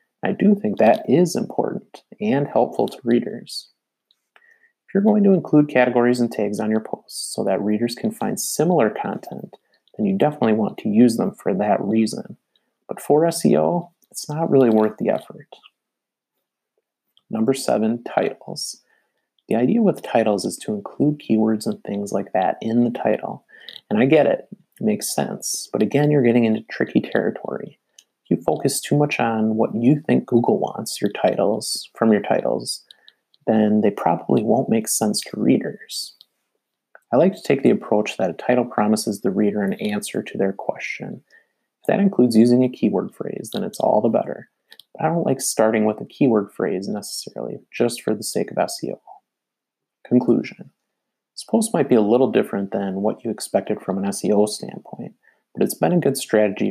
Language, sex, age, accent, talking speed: English, male, 30-49, American, 180 wpm